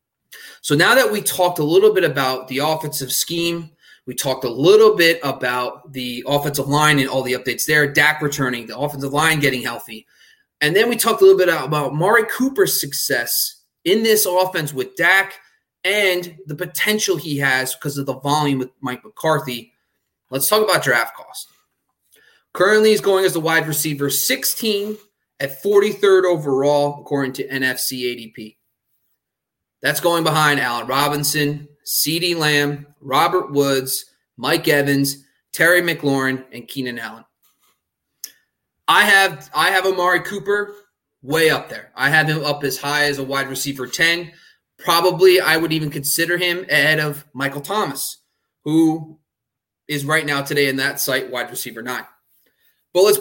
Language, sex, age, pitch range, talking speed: English, male, 30-49, 140-180 Hz, 160 wpm